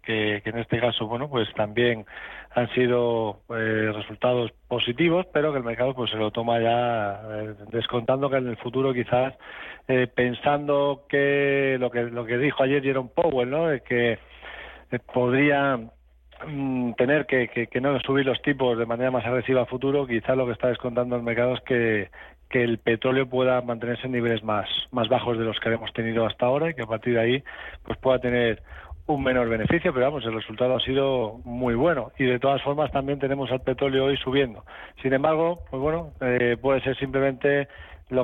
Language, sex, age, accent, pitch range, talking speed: Spanish, male, 40-59, Spanish, 115-135 Hz, 195 wpm